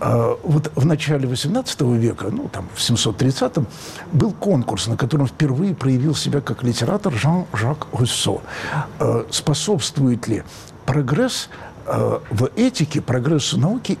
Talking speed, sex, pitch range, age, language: 115 wpm, male, 120-165 Hz, 60-79, Russian